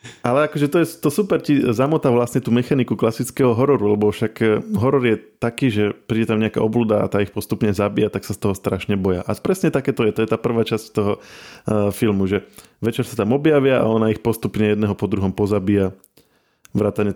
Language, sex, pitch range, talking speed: Slovak, male, 105-125 Hz, 215 wpm